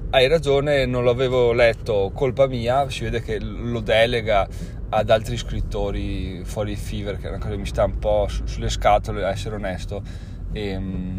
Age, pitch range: 20-39, 105-130 Hz